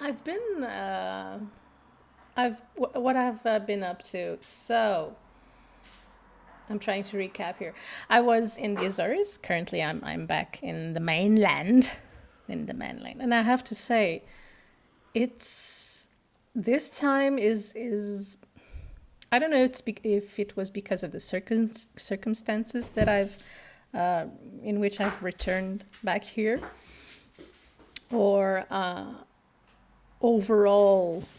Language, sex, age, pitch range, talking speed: English, female, 30-49, 185-235 Hz, 120 wpm